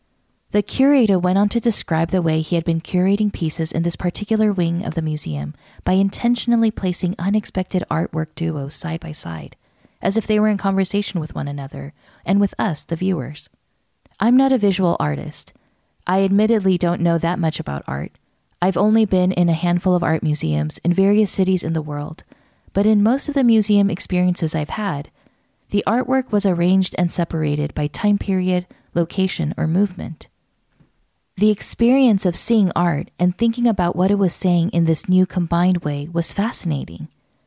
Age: 20-39